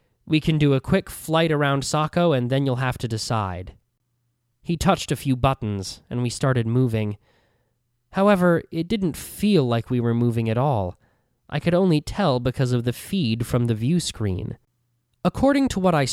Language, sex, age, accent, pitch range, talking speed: English, male, 20-39, American, 120-150 Hz, 180 wpm